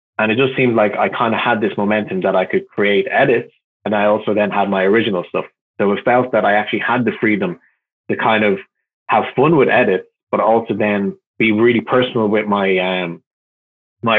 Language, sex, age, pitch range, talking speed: English, male, 20-39, 95-115 Hz, 210 wpm